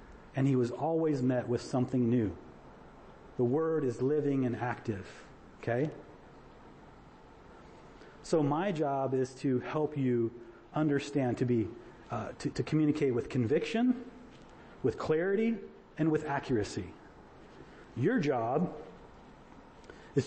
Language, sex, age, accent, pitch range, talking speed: English, male, 40-59, American, 130-175 Hz, 115 wpm